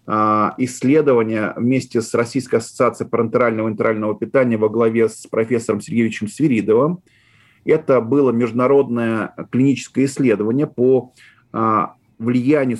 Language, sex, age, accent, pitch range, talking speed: Russian, male, 30-49, native, 115-135 Hz, 105 wpm